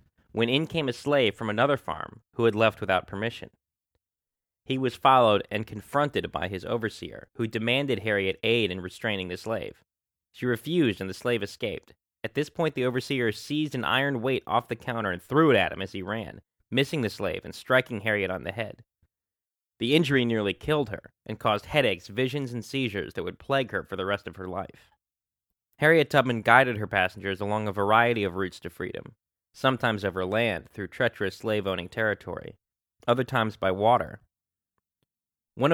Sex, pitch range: male, 100-125 Hz